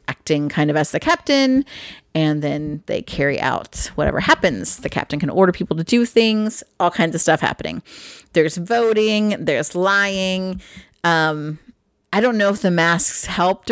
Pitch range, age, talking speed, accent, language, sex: 160-220 Hz, 30-49, 165 wpm, American, English, female